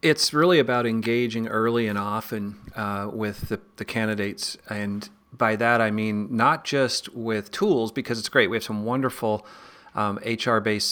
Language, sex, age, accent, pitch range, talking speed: English, male, 40-59, American, 110-135 Hz, 165 wpm